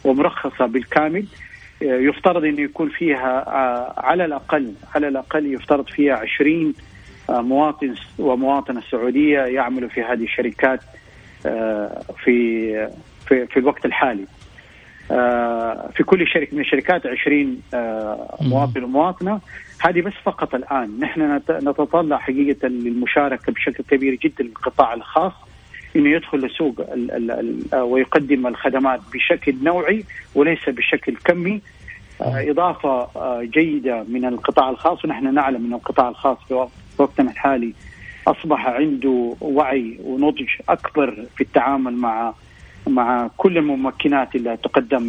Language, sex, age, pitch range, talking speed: Arabic, male, 40-59, 125-150 Hz, 110 wpm